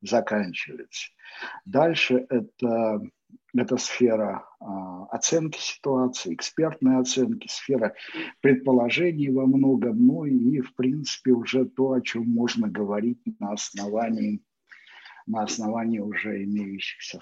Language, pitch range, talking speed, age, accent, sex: Russian, 125-185 Hz, 105 wpm, 60-79, native, male